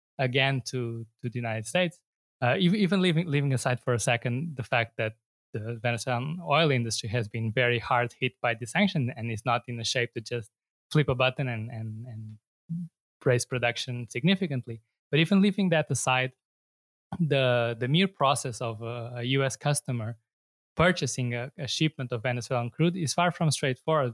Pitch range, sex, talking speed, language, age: 120-140 Hz, male, 175 wpm, English, 20-39